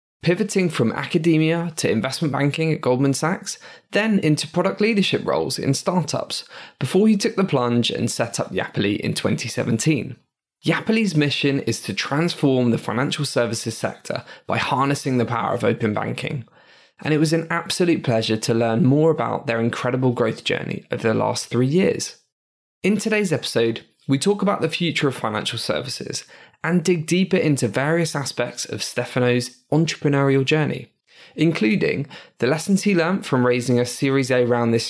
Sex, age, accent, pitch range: male, 10-29, British, 125-175 Hz